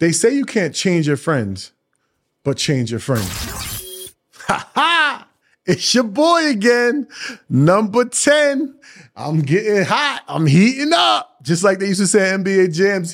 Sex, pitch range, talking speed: male, 145-185 Hz, 155 wpm